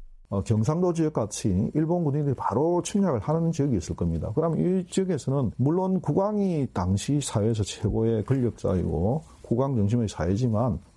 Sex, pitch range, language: male, 100-145 Hz, Korean